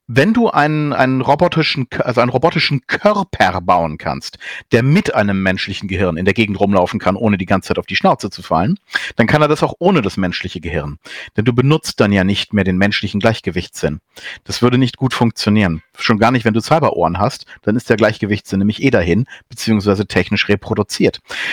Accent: German